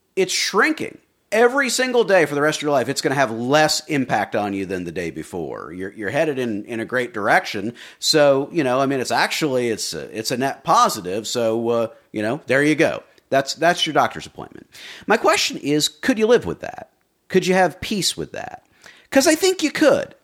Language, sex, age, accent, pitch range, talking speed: English, male, 40-59, American, 120-170 Hz, 220 wpm